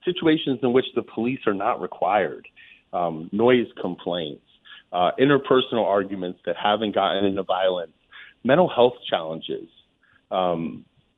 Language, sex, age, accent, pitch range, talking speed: English, male, 30-49, American, 100-150 Hz, 125 wpm